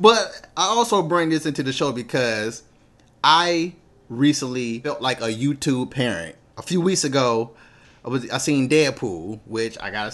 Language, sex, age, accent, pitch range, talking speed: English, male, 30-49, American, 115-145 Hz, 170 wpm